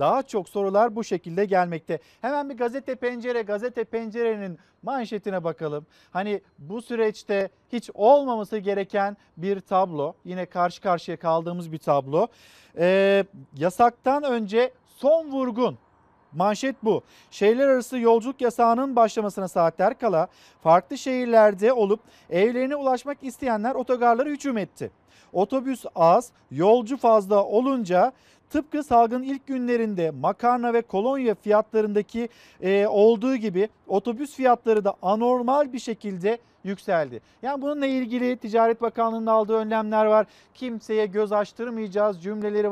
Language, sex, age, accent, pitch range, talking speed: Turkish, male, 40-59, native, 195-245 Hz, 120 wpm